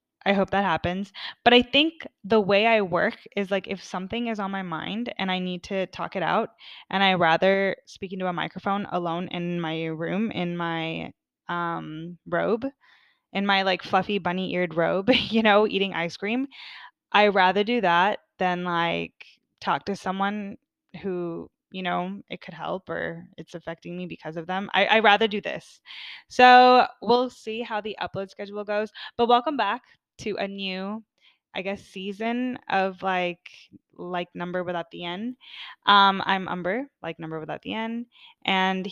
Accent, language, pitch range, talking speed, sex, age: American, English, 175-210 Hz, 175 wpm, female, 10-29